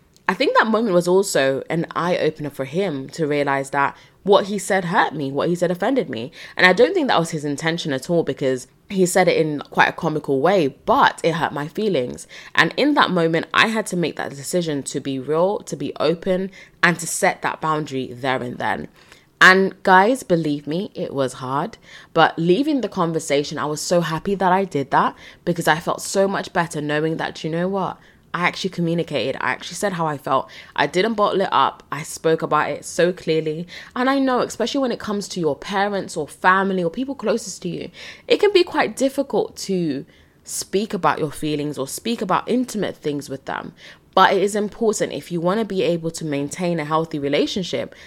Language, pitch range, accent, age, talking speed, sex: English, 150-195 Hz, British, 20-39, 210 wpm, female